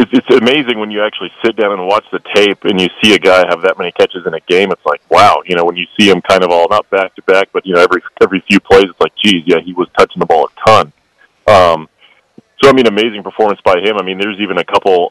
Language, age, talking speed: English, 30-49, 275 wpm